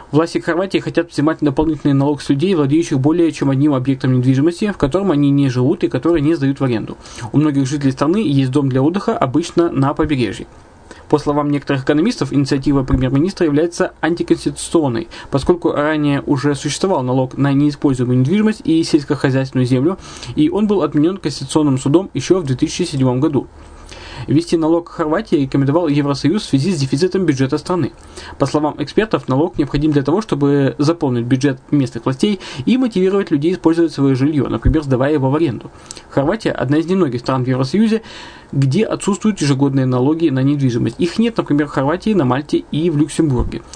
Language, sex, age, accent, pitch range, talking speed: Russian, male, 20-39, native, 135-165 Hz, 170 wpm